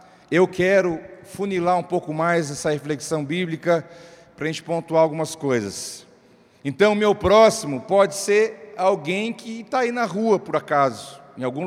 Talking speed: 155 wpm